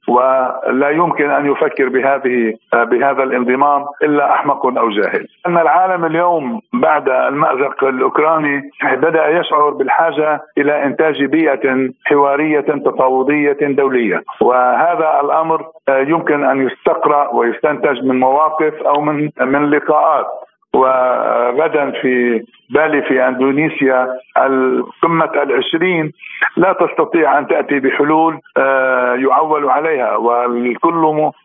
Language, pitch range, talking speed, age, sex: Arabic, 135-160 Hz, 100 wpm, 60-79, male